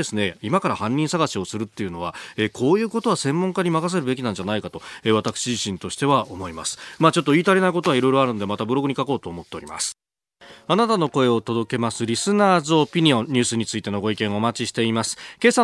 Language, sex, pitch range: Japanese, male, 110-160 Hz